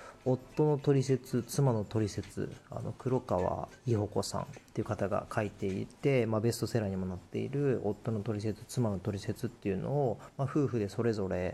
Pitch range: 100-130 Hz